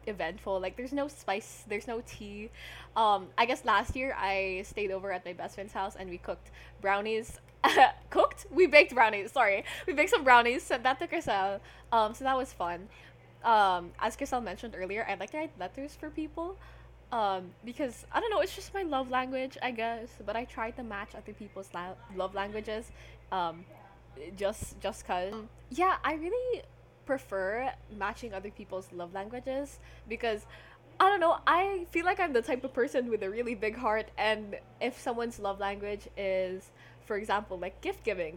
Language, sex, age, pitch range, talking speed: English, female, 10-29, 195-260 Hz, 185 wpm